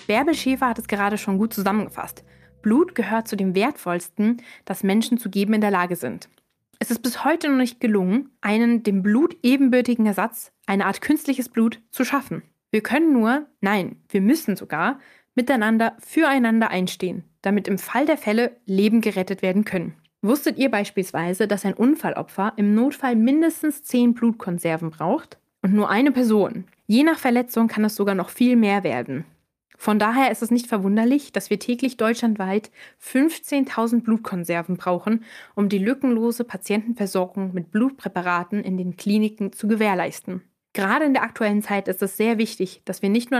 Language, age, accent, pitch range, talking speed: German, 20-39, German, 195-245 Hz, 165 wpm